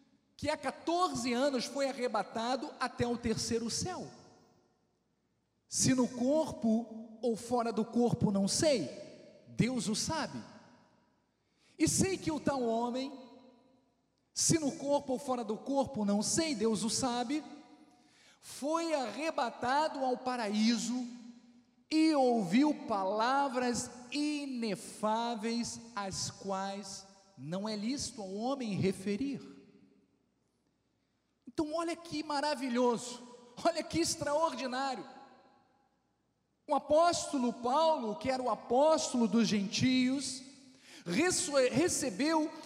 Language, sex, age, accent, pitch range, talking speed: Portuguese, male, 50-69, Brazilian, 230-290 Hz, 105 wpm